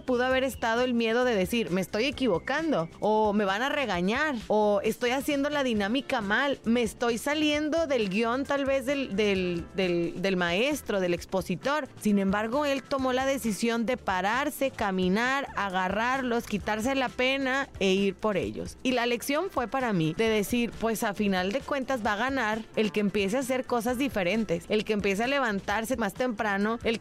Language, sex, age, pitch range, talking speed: Spanish, female, 30-49, 210-260 Hz, 185 wpm